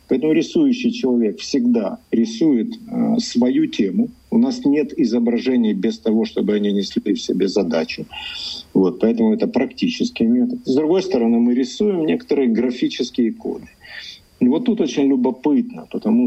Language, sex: Russian, male